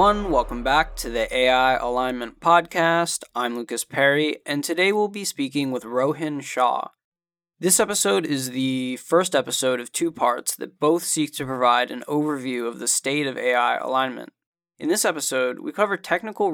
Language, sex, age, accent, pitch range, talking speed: English, male, 20-39, American, 130-160 Hz, 165 wpm